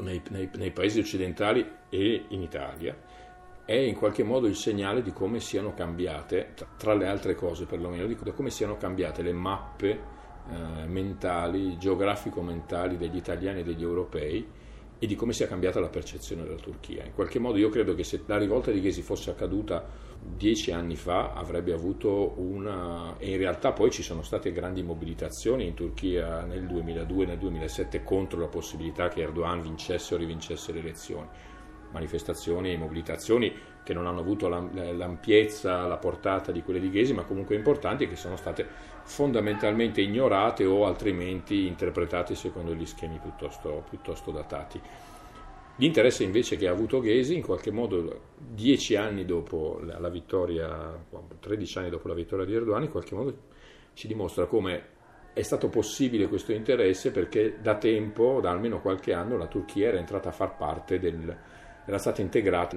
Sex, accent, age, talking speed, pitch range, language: male, native, 40-59, 165 wpm, 85-95 Hz, Italian